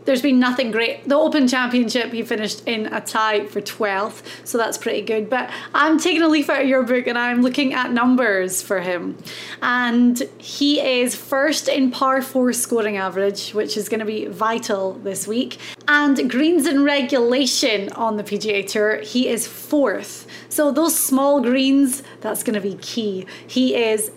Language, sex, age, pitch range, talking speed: English, female, 20-39, 215-270 Hz, 180 wpm